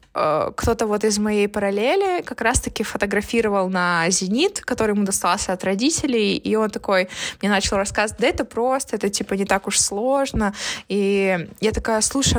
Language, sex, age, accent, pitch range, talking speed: Russian, female, 20-39, native, 205-250 Hz, 165 wpm